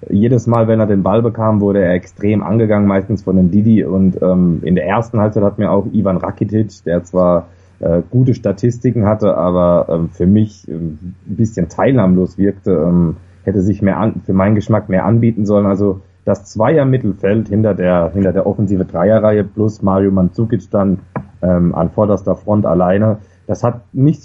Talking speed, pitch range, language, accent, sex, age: 180 wpm, 95-115 Hz, German, German, male, 30-49